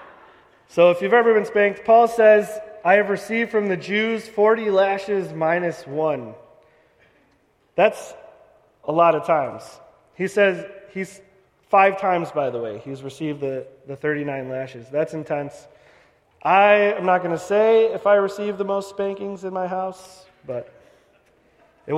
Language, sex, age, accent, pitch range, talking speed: English, male, 30-49, American, 155-205 Hz, 155 wpm